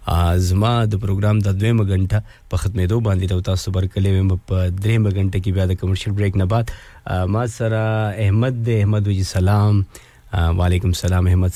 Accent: Indian